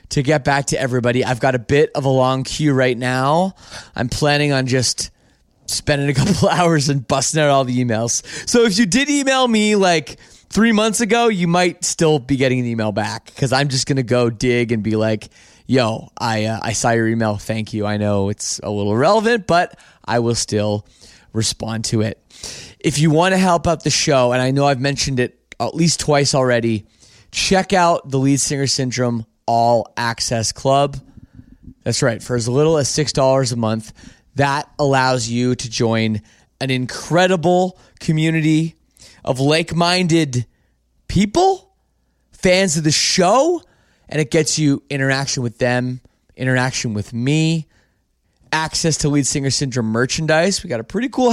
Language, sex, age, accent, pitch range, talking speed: English, male, 30-49, American, 120-165 Hz, 180 wpm